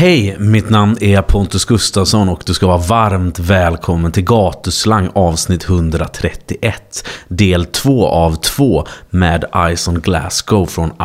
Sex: male